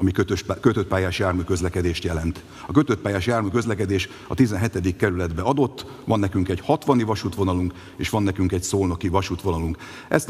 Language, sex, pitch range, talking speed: Hungarian, male, 95-125 Hz, 155 wpm